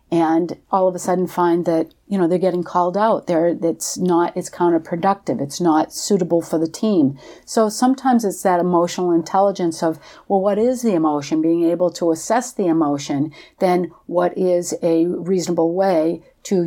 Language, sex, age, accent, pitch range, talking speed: English, female, 50-69, American, 165-225 Hz, 175 wpm